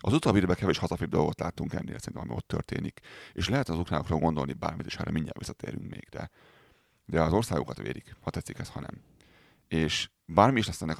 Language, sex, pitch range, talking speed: Hungarian, male, 80-95 Hz, 200 wpm